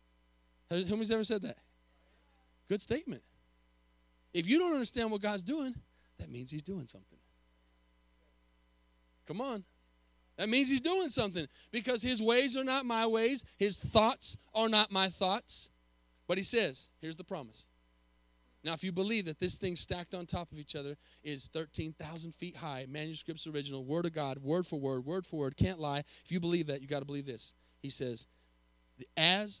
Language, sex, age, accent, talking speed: English, male, 30-49, American, 175 wpm